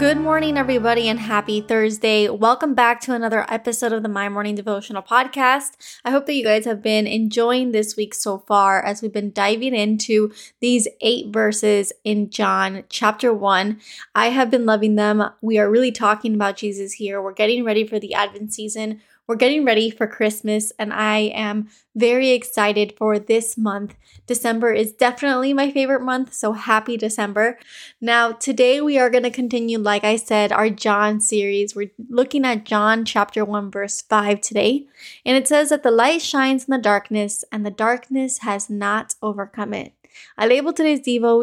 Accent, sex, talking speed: American, female, 180 wpm